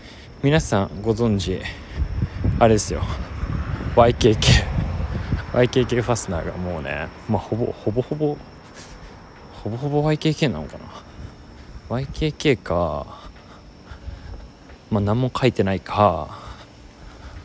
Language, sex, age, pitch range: Japanese, male, 20-39, 90-115 Hz